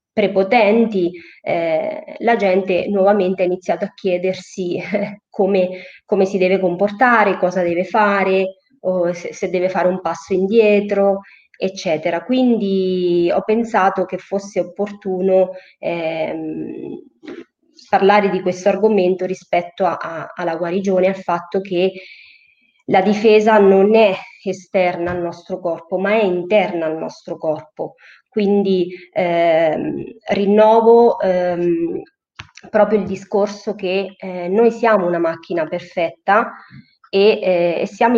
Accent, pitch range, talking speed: native, 180-210 Hz, 120 wpm